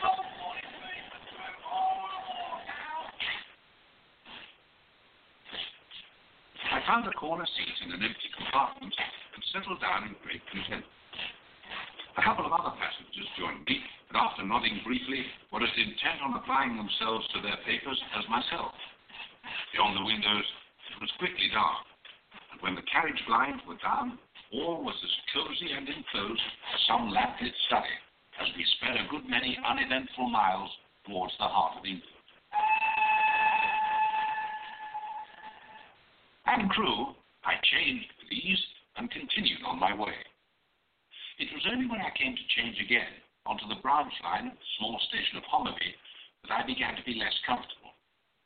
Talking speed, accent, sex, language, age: 140 wpm, American, male, English, 60-79